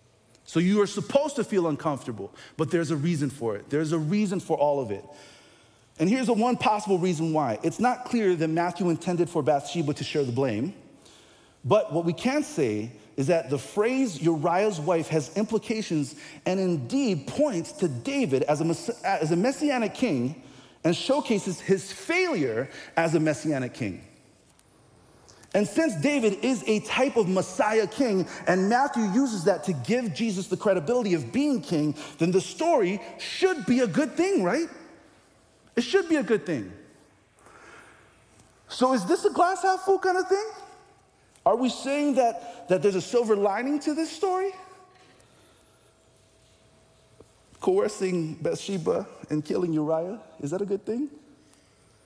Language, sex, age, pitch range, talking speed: English, male, 40-59, 160-260 Hz, 155 wpm